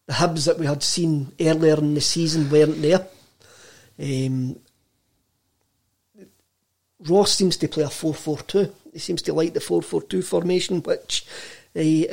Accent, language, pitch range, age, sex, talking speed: British, English, 150-185 Hz, 40-59, male, 160 wpm